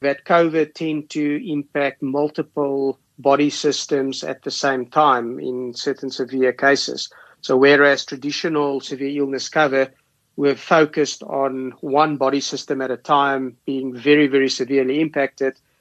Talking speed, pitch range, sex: 135 wpm, 130-145 Hz, male